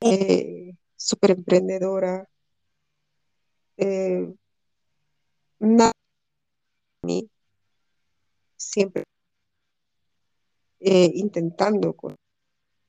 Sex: female